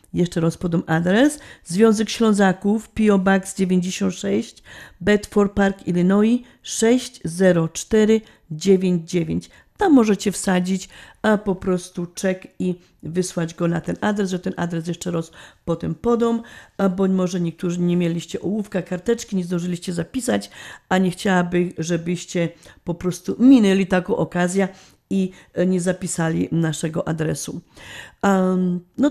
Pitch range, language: 170-200 Hz, Polish